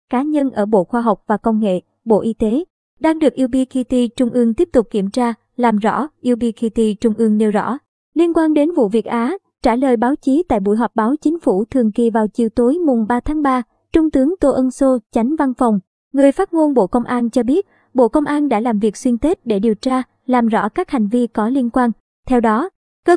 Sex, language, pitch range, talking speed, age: male, Vietnamese, 225-280 Hz, 235 wpm, 20-39